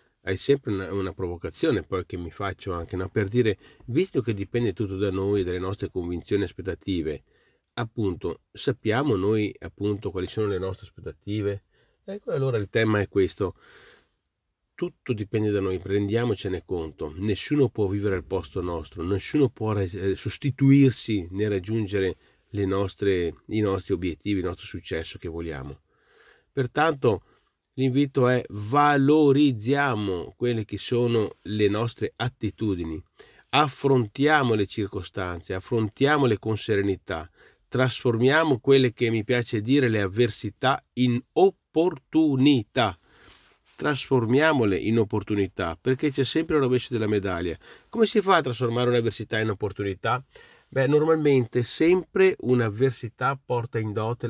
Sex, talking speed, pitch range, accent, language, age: male, 130 wpm, 100-130 Hz, native, Italian, 40-59